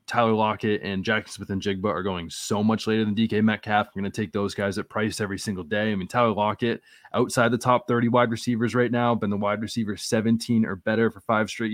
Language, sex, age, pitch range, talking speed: English, male, 20-39, 105-120 Hz, 245 wpm